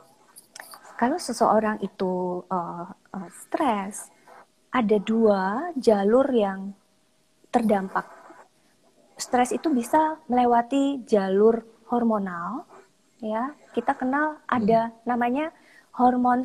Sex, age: female, 20-39